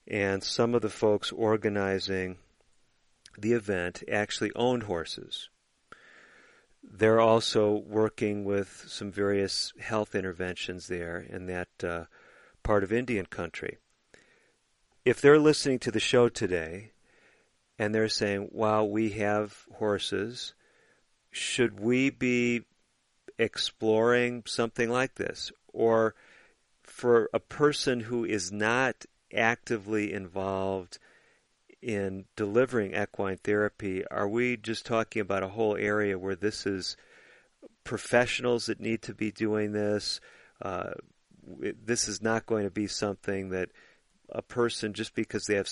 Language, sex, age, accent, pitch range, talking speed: English, male, 40-59, American, 95-115 Hz, 125 wpm